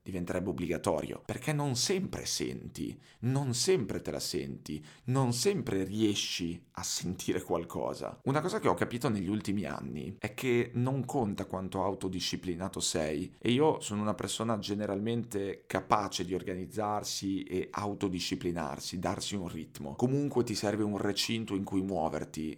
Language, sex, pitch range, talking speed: Italian, male, 95-115 Hz, 145 wpm